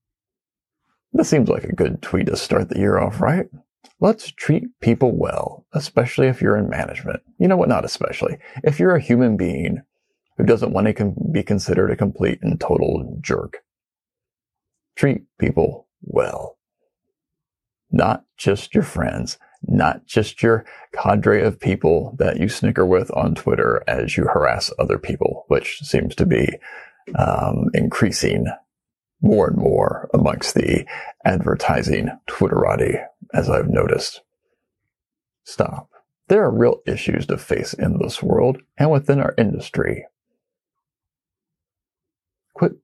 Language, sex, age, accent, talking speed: English, male, 40-59, American, 135 wpm